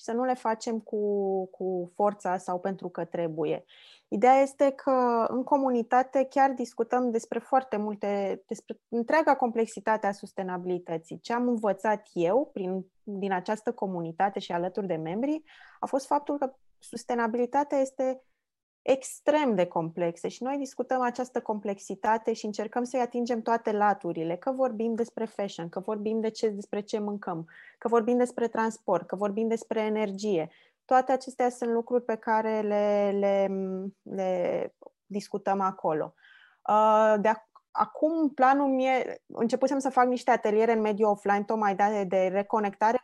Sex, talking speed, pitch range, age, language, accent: female, 145 wpm, 205-255 Hz, 20-39, English, Romanian